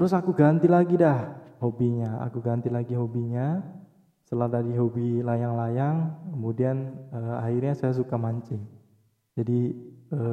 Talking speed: 130 wpm